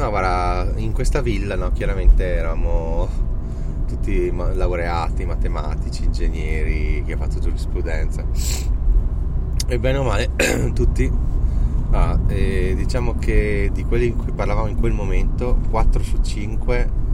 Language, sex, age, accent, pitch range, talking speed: Italian, male, 20-39, native, 80-110 Hz, 125 wpm